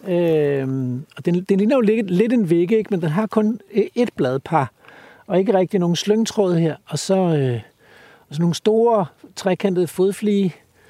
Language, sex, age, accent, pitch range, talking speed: Danish, male, 60-79, native, 145-195 Hz, 175 wpm